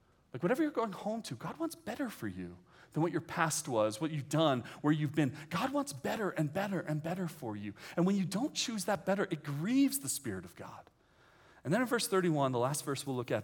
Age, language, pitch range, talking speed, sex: 40-59, English, 115-175 Hz, 245 wpm, male